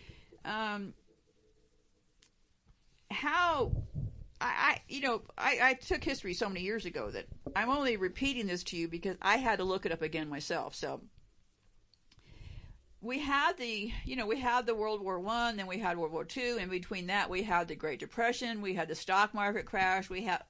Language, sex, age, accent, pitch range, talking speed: English, female, 50-69, American, 185-245 Hz, 185 wpm